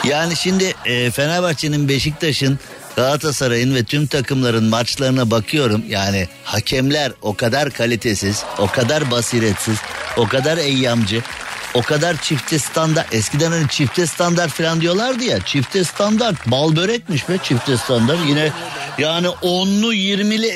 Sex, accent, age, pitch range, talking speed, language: male, native, 50-69, 125-170 Hz, 125 wpm, Turkish